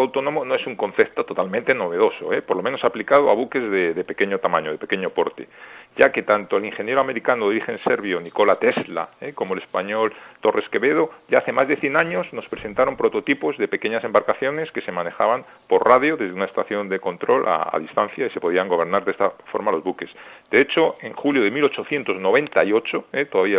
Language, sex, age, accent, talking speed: Spanish, male, 40-59, Spanish, 195 wpm